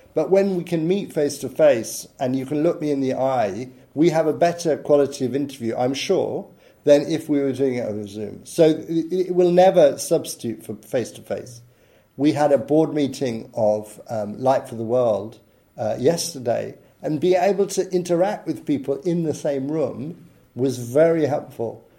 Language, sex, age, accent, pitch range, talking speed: German, male, 50-69, British, 125-160 Hz, 175 wpm